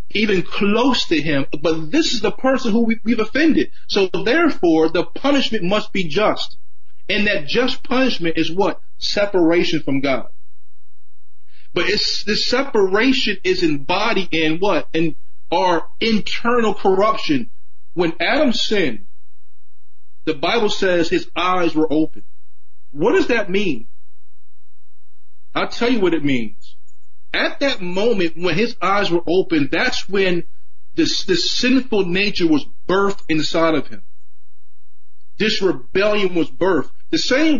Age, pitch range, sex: 40-59, 175-245 Hz, male